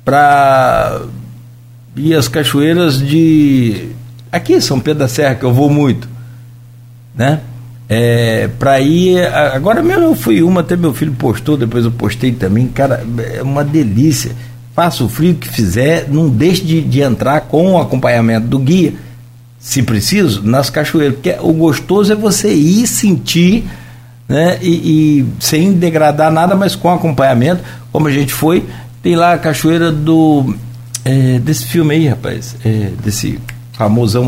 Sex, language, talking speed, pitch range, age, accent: male, Portuguese, 155 wpm, 120-155 Hz, 60-79, Brazilian